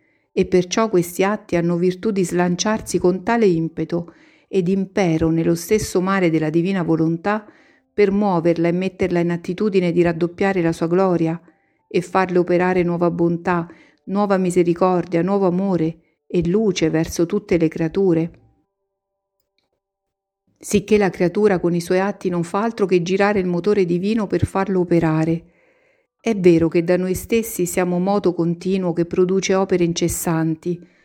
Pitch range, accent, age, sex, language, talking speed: 170-205 Hz, native, 50-69, female, Italian, 145 wpm